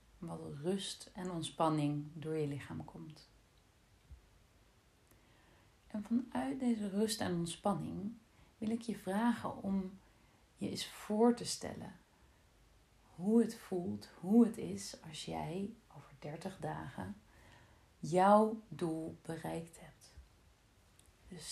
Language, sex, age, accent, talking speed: Dutch, female, 40-59, Dutch, 110 wpm